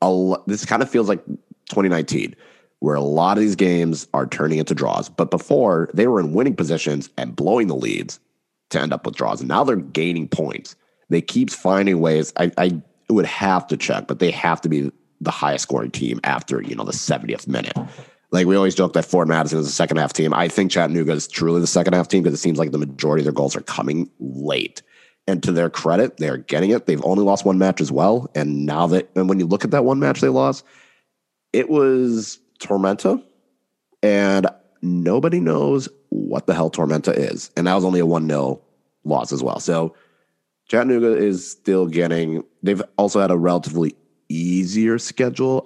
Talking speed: 205 wpm